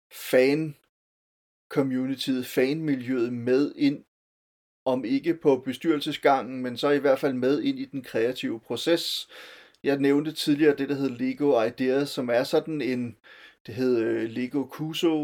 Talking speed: 140 wpm